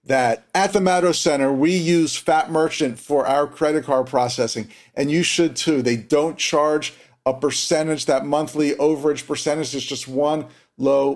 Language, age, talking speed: English, 40-59, 165 wpm